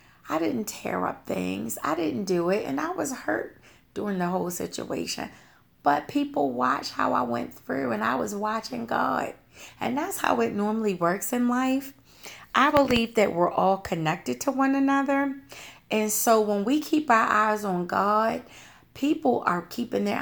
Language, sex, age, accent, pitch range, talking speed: English, female, 40-59, American, 190-245 Hz, 175 wpm